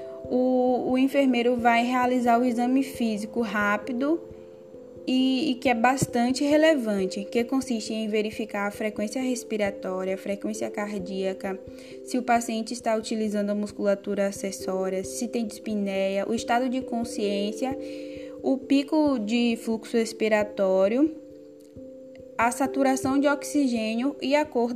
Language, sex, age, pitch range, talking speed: Portuguese, female, 10-29, 205-260 Hz, 125 wpm